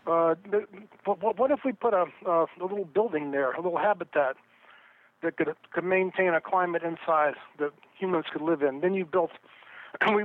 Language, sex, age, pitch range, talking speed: English, male, 50-69, 160-190 Hz, 170 wpm